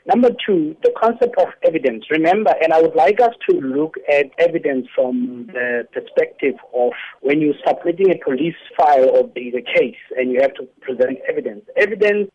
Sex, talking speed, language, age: male, 175 wpm, English, 50-69